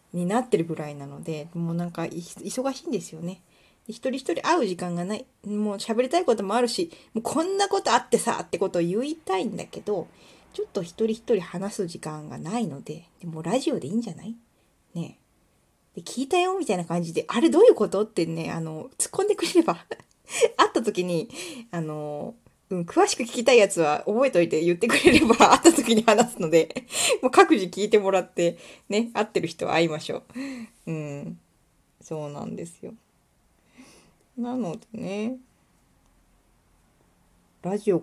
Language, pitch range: Japanese, 170-250 Hz